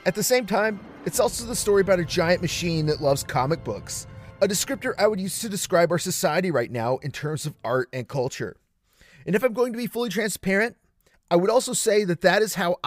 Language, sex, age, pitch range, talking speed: English, male, 30-49, 150-210 Hz, 230 wpm